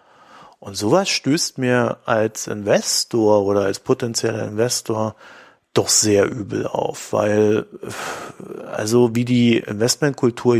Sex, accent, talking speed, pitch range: male, German, 110 wpm, 110-125 Hz